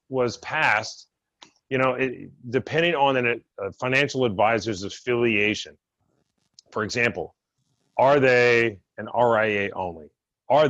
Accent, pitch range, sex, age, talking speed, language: American, 105-130 Hz, male, 30-49, 110 wpm, English